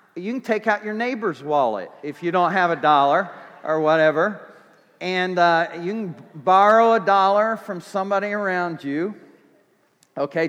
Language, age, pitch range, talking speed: English, 50-69, 150-195 Hz, 155 wpm